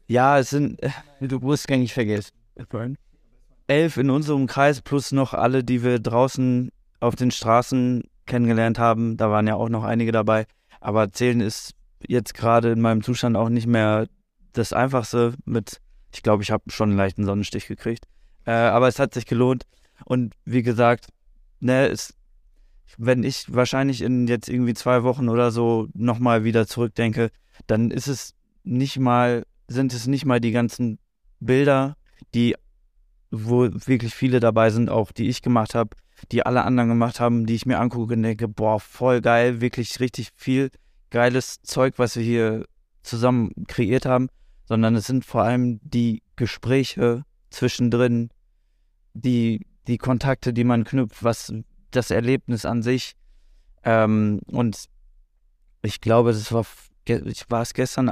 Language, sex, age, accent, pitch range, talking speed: German, male, 20-39, German, 115-125 Hz, 160 wpm